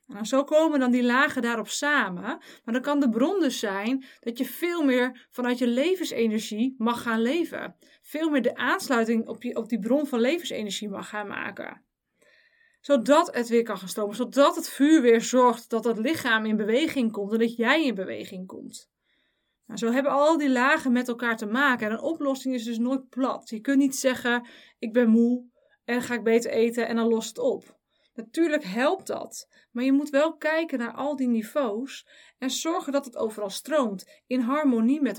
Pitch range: 230-290 Hz